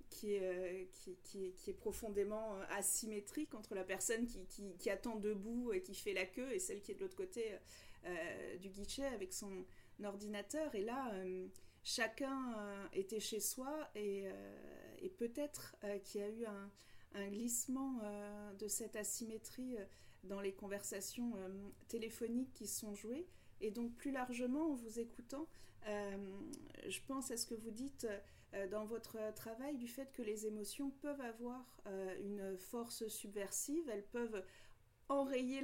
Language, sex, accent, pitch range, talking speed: French, female, French, 205-255 Hz, 165 wpm